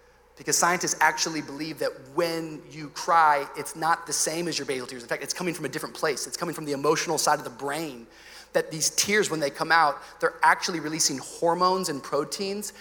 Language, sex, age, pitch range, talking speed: English, male, 30-49, 175-280 Hz, 215 wpm